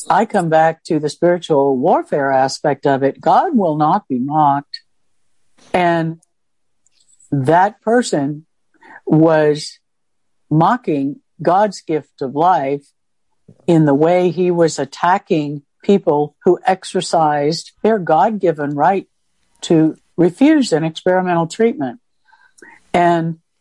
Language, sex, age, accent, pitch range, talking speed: English, female, 60-79, American, 155-200 Hz, 105 wpm